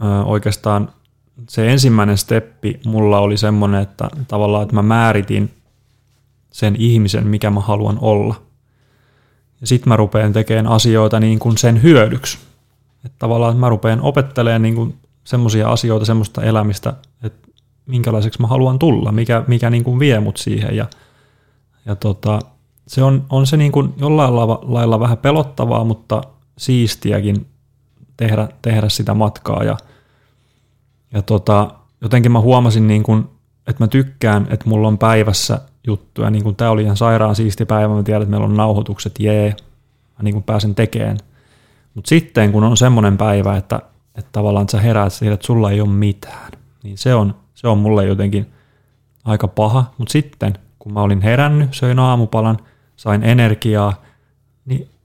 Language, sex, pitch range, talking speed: Finnish, male, 105-130 Hz, 145 wpm